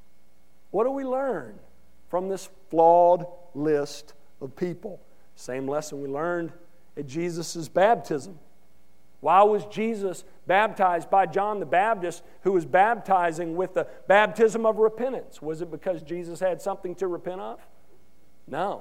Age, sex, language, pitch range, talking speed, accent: 50-69, male, English, 165-235 Hz, 135 wpm, American